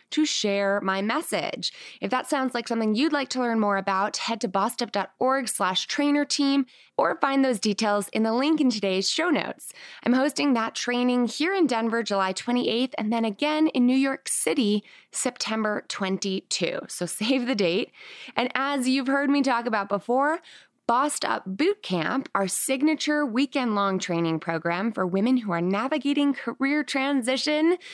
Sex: female